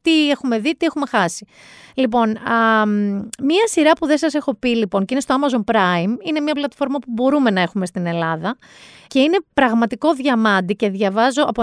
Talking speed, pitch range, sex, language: 190 wpm, 205-275 Hz, female, Greek